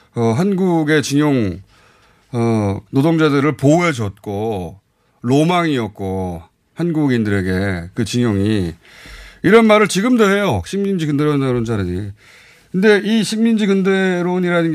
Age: 30-49